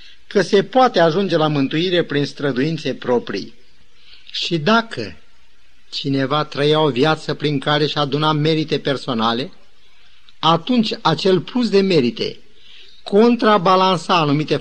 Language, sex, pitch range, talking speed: Romanian, male, 145-195 Hz, 115 wpm